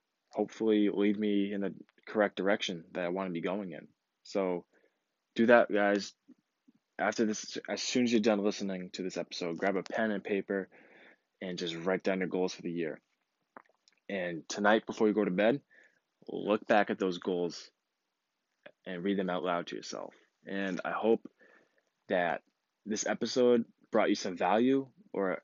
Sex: male